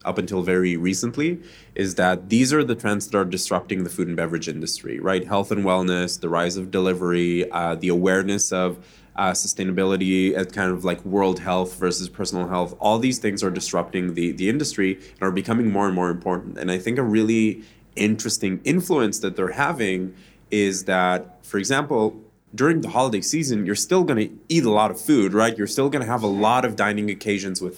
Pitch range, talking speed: 90-110 Hz, 200 wpm